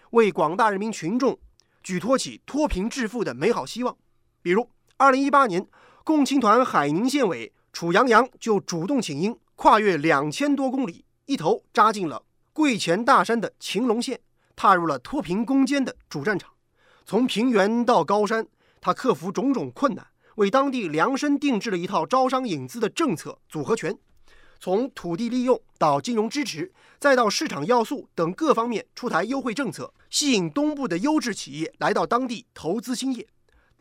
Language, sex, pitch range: Chinese, male, 190-265 Hz